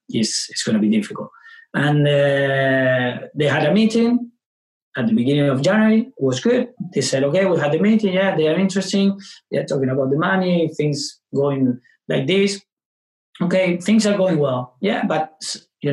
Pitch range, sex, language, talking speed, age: 135-190 Hz, male, English, 180 wpm, 30-49